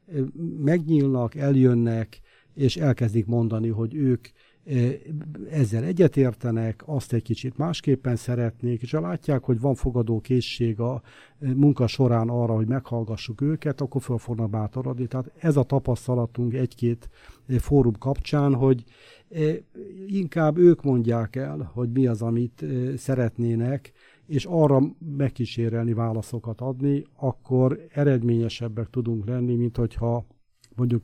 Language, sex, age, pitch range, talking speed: Hungarian, male, 60-79, 115-140 Hz, 120 wpm